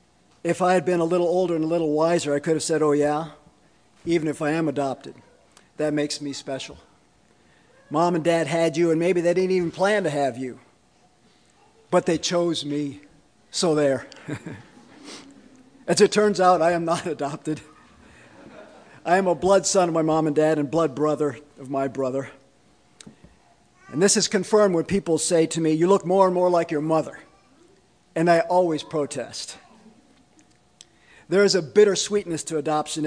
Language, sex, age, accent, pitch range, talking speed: English, male, 50-69, American, 150-175 Hz, 175 wpm